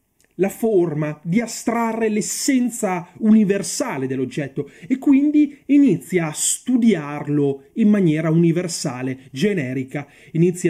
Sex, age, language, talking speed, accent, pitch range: male, 30-49, Italian, 95 wpm, native, 150-210 Hz